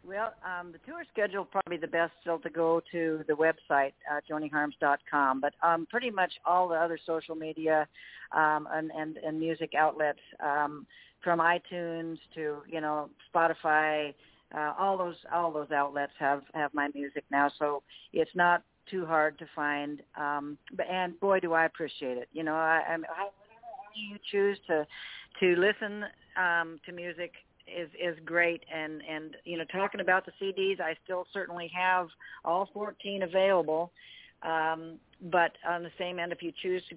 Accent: American